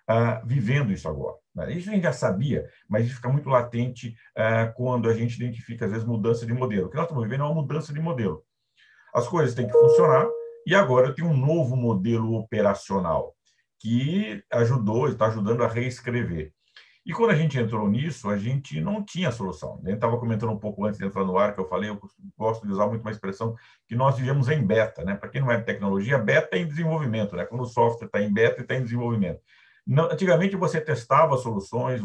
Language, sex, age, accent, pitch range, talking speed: Portuguese, male, 50-69, Brazilian, 115-160 Hz, 215 wpm